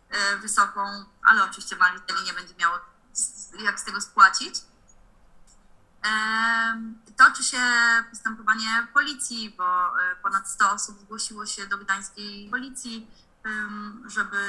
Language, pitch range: Polish, 195-235 Hz